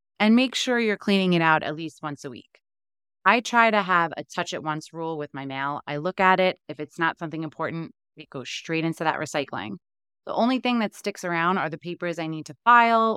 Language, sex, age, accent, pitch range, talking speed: English, female, 20-39, American, 165-225 Hz, 230 wpm